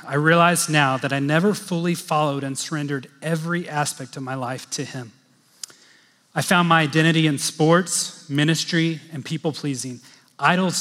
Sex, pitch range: male, 145-175 Hz